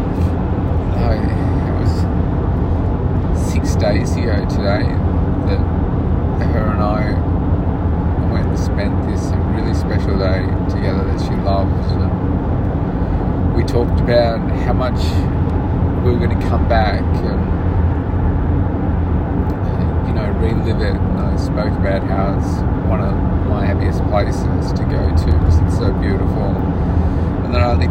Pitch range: 90-95 Hz